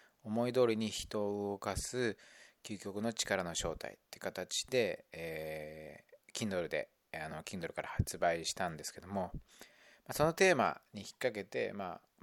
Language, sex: Japanese, male